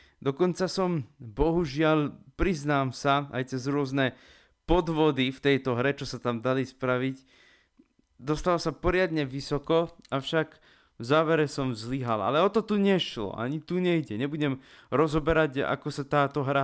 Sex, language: male, Slovak